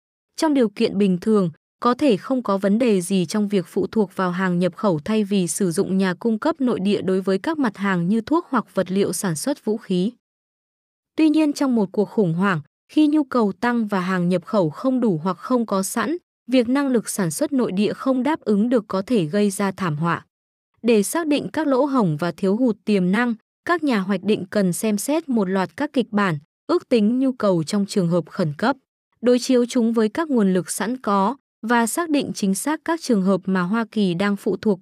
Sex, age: female, 20-39